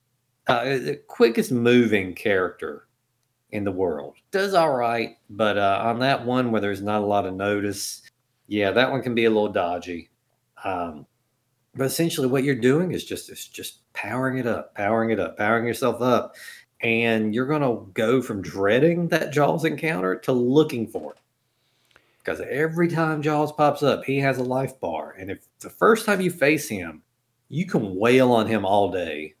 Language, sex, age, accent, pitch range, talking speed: English, male, 40-59, American, 105-135 Hz, 185 wpm